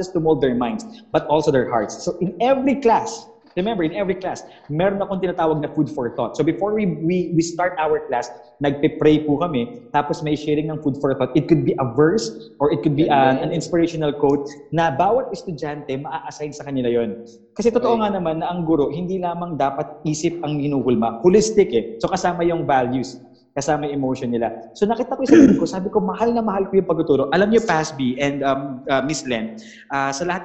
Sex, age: male, 20-39